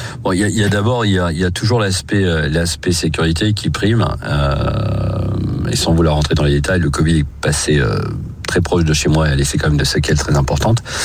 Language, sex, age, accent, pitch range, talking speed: French, male, 40-59, French, 70-90 Hz, 250 wpm